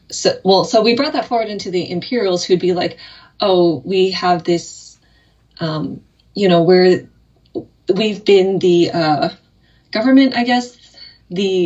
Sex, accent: female, American